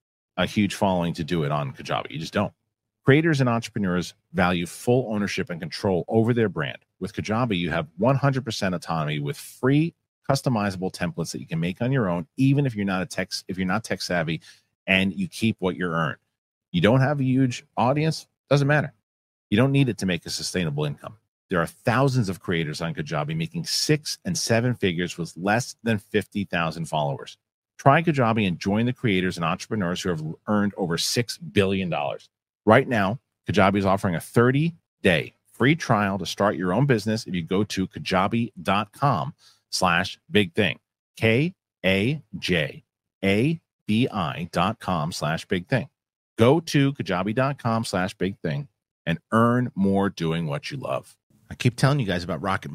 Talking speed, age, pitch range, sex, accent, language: 170 wpm, 40-59, 95-130 Hz, male, American, English